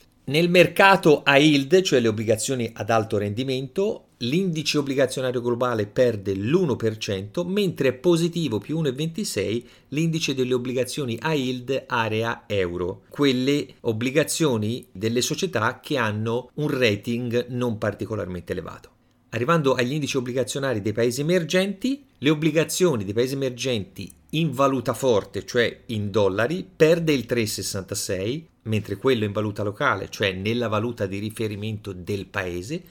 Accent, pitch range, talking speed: native, 105-140 Hz, 130 wpm